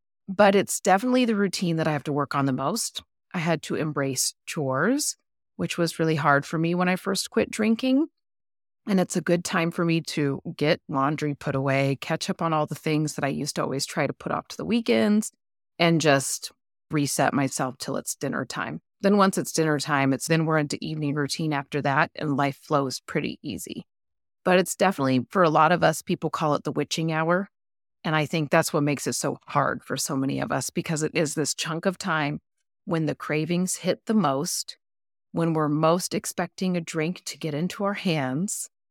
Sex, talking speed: female, 210 wpm